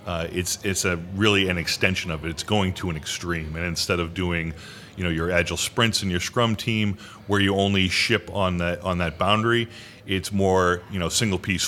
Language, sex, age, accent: English, male, 40-59, American